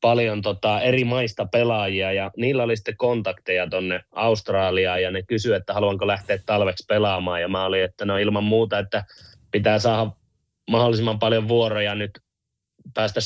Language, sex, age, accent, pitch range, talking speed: Finnish, male, 20-39, native, 100-115 Hz, 160 wpm